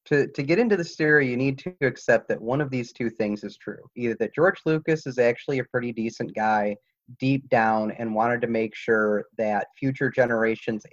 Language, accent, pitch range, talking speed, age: English, American, 110-145 Hz, 210 wpm, 30-49